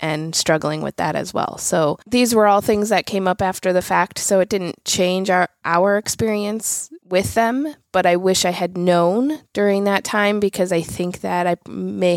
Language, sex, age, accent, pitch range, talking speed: English, female, 20-39, American, 160-185 Hz, 200 wpm